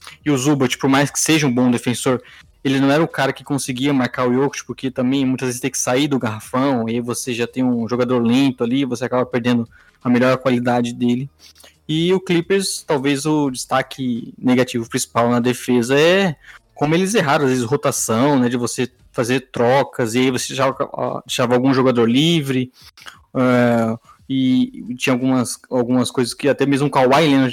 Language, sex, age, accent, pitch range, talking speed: Portuguese, male, 20-39, Brazilian, 120-135 Hz, 190 wpm